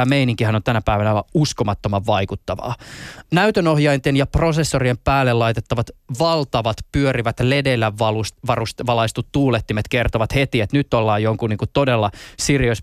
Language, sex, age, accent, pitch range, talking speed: Finnish, male, 20-39, native, 115-140 Hz, 125 wpm